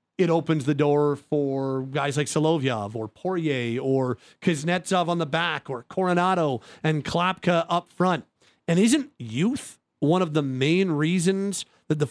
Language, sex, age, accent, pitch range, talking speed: English, male, 40-59, American, 155-190 Hz, 155 wpm